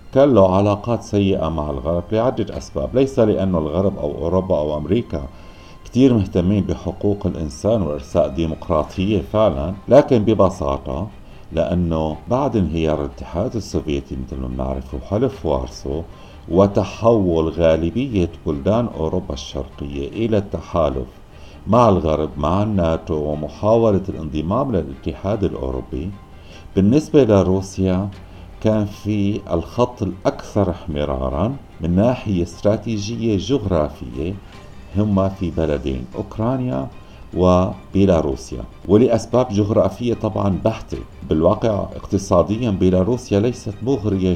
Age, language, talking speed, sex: 60-79, Arabic, 100 wpm, male